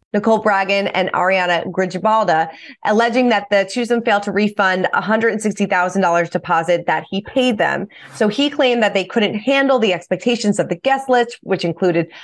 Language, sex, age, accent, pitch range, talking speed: English, female, 20-39, American, 180-220 Hz, 160 wpm